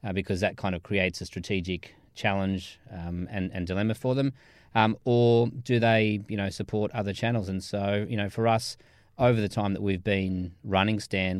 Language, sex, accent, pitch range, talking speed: English, male, Australian, 95-105 Hz, 200 wpm